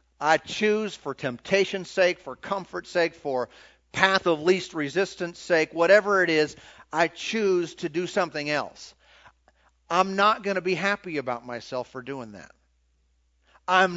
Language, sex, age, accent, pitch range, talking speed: English, male, 40-59, American, 135-185 Hz, 150 wpm